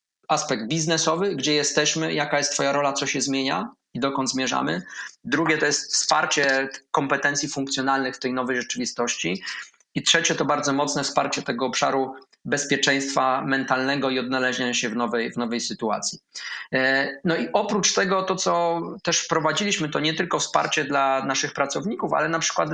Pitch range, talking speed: 135-160 Hz, 155 wpm